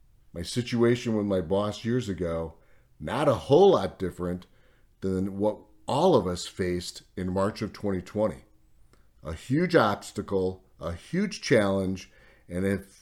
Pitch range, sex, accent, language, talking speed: 95-120 Hz, male, American, English, 140 wpm